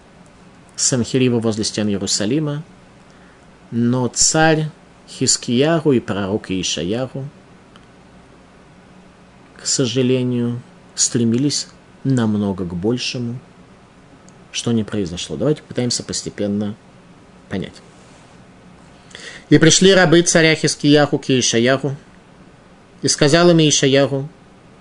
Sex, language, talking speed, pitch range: male, Russian, 80 wpm, 120-160 Hz